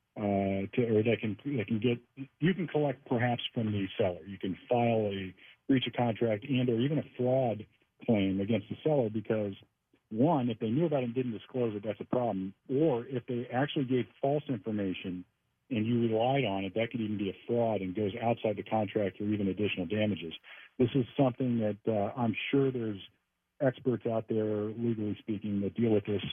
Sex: male